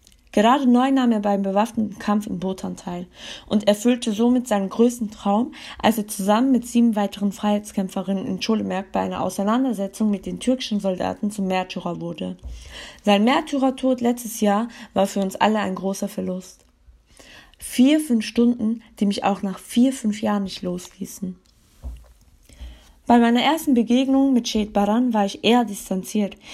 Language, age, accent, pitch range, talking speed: German, 20-39, German, 185-245 Hz, 155 wpm